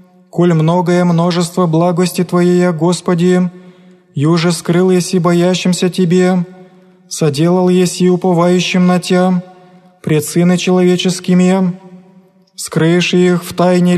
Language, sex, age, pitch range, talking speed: Greek, male, 20-39, 175-180 Hz, 105 wpm